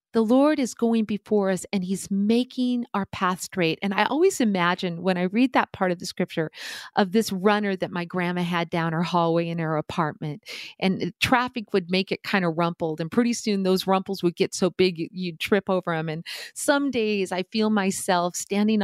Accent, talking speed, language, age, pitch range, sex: American, 205 wpm, English, 40-59, 175-225 Hz, female